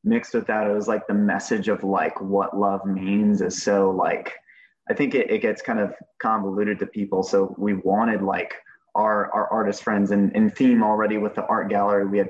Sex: male